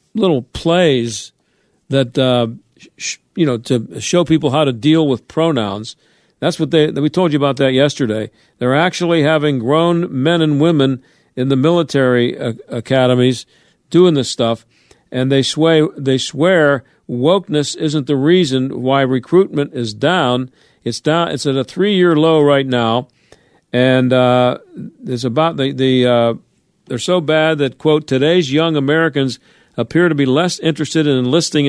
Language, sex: English, male